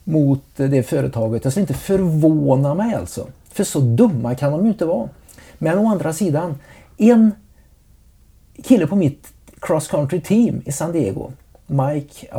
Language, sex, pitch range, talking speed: Swedish, male, 125-165 Hz, 155 wpm